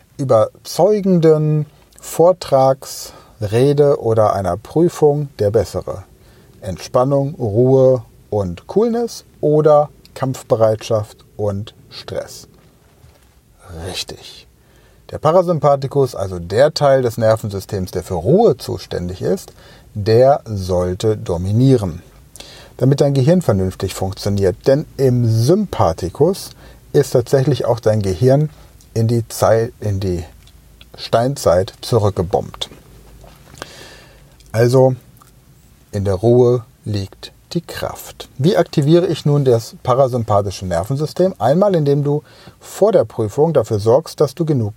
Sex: male